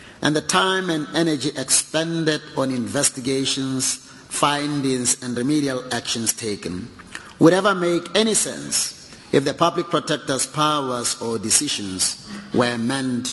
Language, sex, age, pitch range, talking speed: English, male, 50-69, 125-165 Hz, 120 wpm